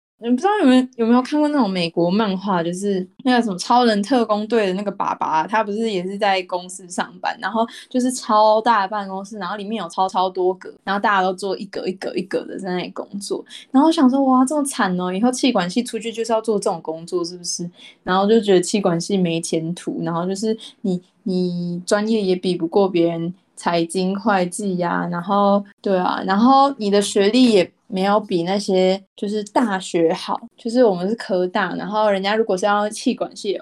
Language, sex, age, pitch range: Chinese, female, 20-39, 180-230 Hz